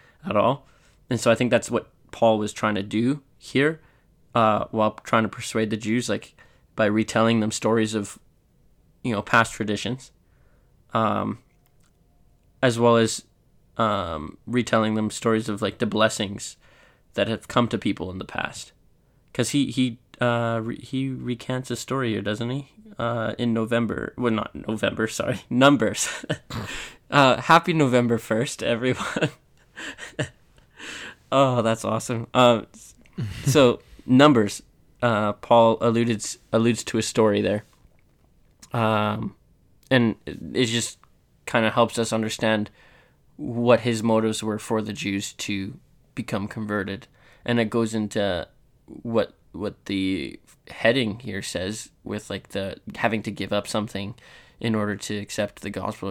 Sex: male